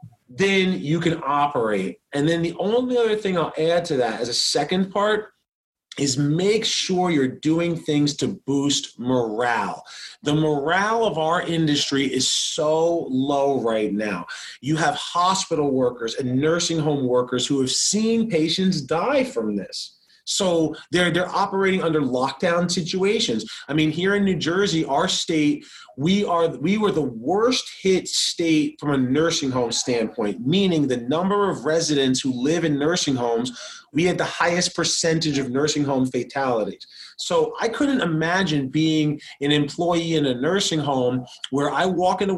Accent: American